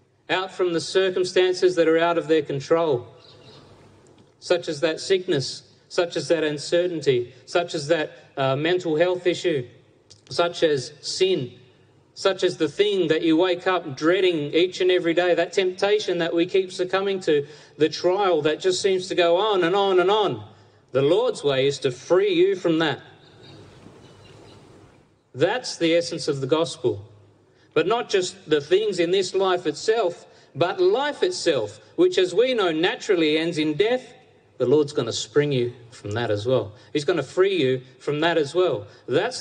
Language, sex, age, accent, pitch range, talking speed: English, male, 40-59, Australian, 140-190 Hz, 175 wpm